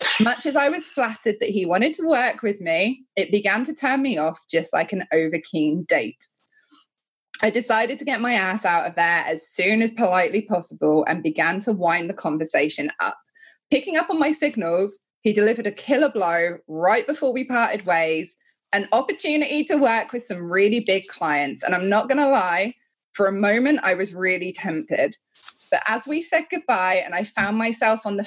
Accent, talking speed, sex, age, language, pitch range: British, 195 wpm, female, 20-39, English, 185-270 Hz